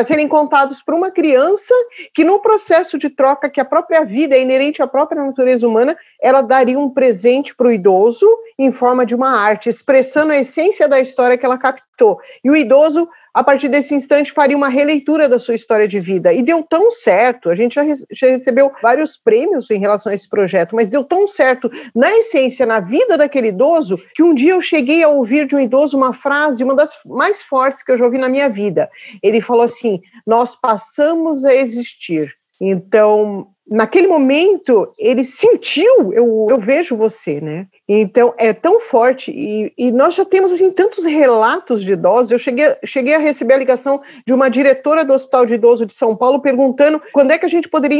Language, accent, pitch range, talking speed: Portuguese, Brazilian, 240-310 Hz, 195 wpm